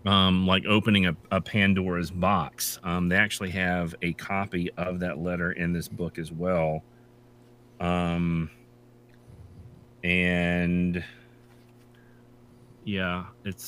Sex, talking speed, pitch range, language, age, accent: male, 110 wpm, 95-120 Hz, English, 30-49, American